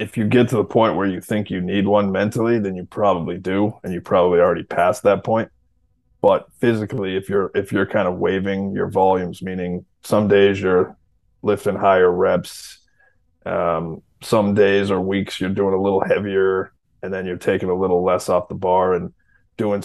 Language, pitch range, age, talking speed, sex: English, 95-110 Hz, 20-39, 195 wpm, male